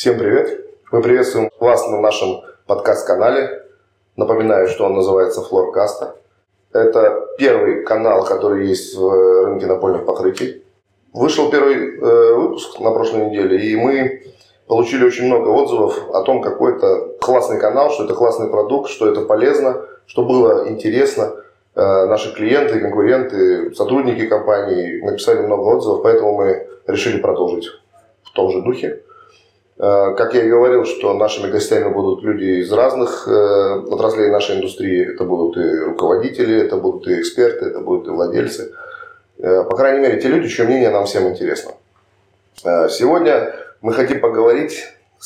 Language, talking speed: Russian, 140 wpm